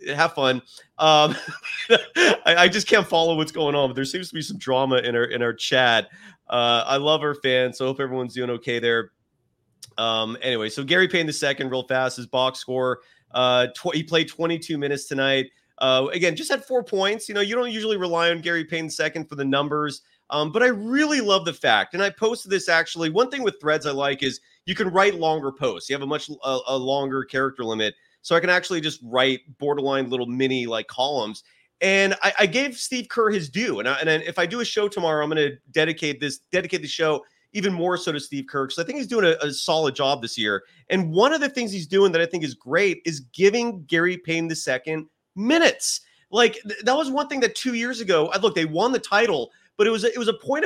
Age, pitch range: 30-49, 135-200 Hz